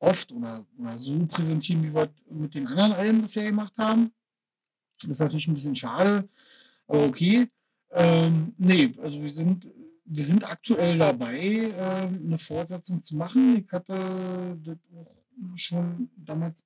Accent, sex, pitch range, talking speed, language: German, male, 155-195 Hz, 150 wpm, German